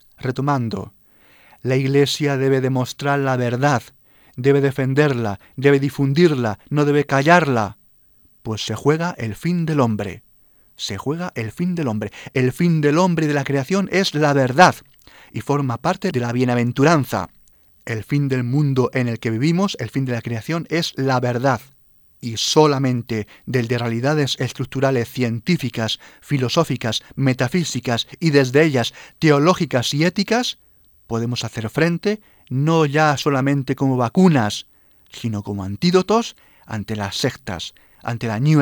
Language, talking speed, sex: Spanish, 145 wpm, male